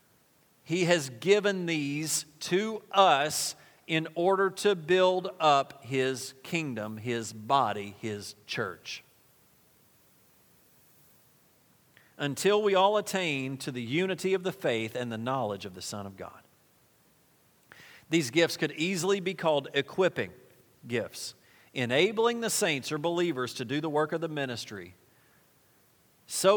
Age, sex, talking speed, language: 40-59, male, 125 wpm, English